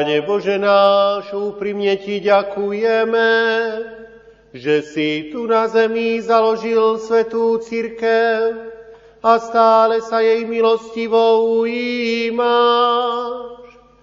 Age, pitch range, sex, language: 40-59, 205-230 Hz, male, Slovak